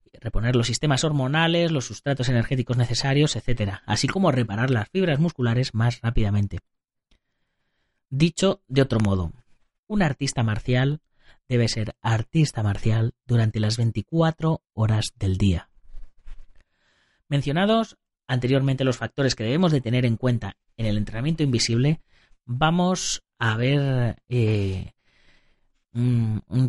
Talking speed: 120 wpm